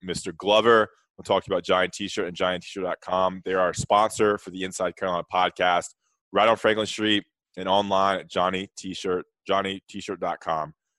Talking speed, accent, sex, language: 165 wpm, American, male, English